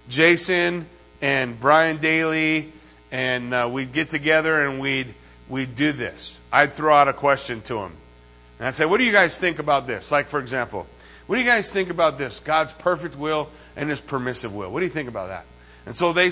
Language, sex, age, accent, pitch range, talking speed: English, male, 40-59, American, 115-170 Hz, 210 wpm